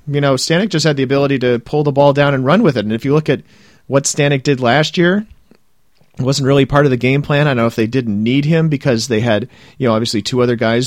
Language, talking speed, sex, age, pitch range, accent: English, 280 wpm, male, 40-59, 105-130 Hz, American